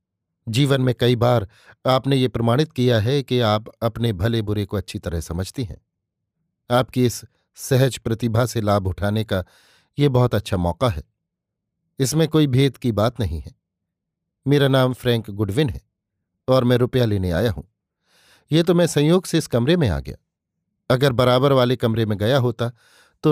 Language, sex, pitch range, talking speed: Hindi, male, 105-135 Hz, 175 wpm